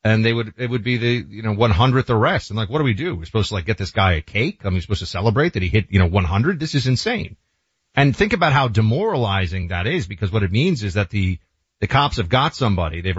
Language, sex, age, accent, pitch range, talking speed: English, male, 40-59, American, 100-140 Hz, 275 wpm